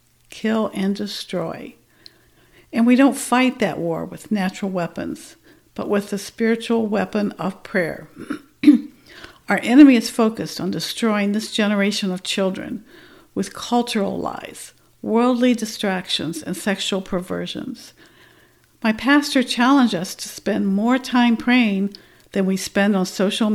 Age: 60-79